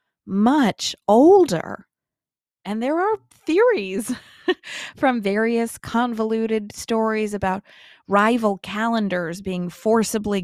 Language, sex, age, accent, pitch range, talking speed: English, female, 20-39, American, 180-240 Hz, 85 wpm